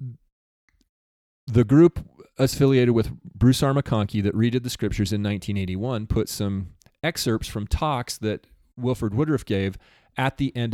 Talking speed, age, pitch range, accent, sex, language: 140 wpm, 30-49, 105-125 Hz, American, male, English